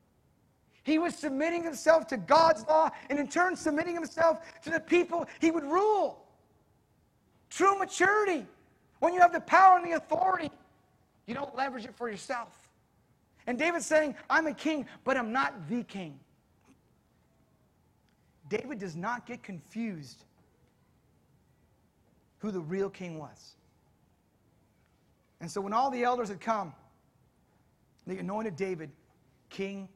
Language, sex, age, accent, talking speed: English, male, 40-59, American, 135 wpm